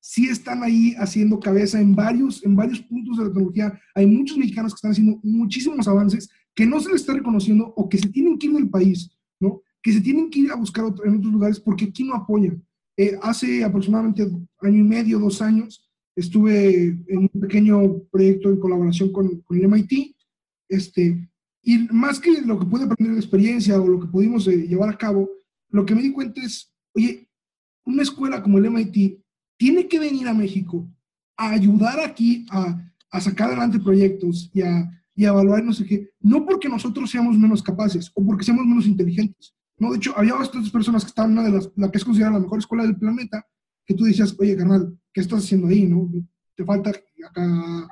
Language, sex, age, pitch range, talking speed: Spanish, male, 30-49, 195-230 Hz, 210 wpm